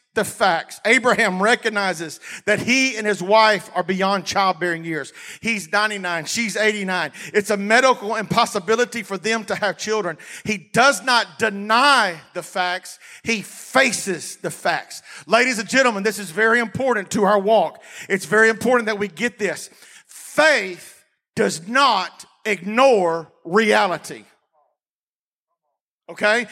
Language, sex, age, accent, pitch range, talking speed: English, male, 40-59, American, 200-240 Hz, 135 wpm